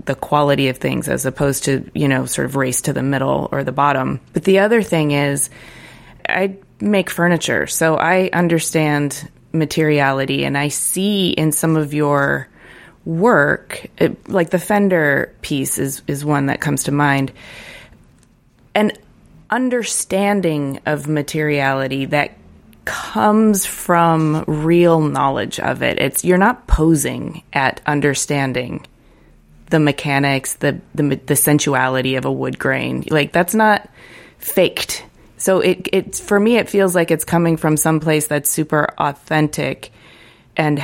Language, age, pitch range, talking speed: English, 20-39, 140-170 Hz, 145 wpm